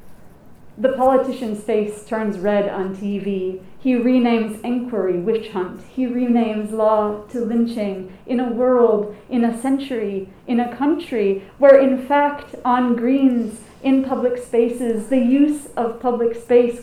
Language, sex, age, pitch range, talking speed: English, female, 30-49, 215-255 Hz, 140 wpm